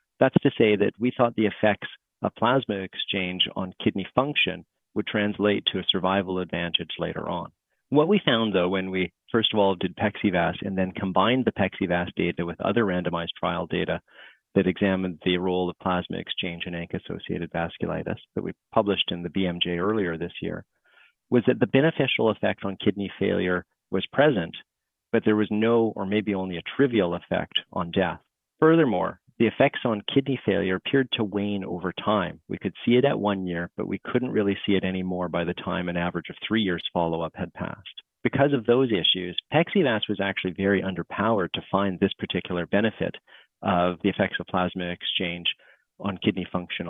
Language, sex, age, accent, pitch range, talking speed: English, male, 40-59, American, 90-110 Hz, 185 wpm